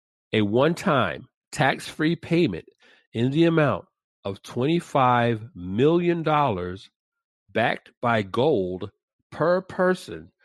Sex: male